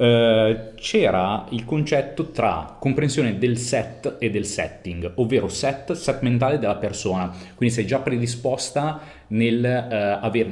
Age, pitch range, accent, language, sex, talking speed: 30-49, 95-125 Hz, native, Italian, male, 125 wpm